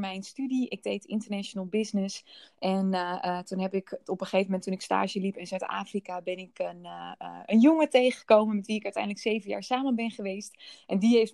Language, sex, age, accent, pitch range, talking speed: Dutch, female, 20-39, Dutch, 190-225 Hz, 220 wpm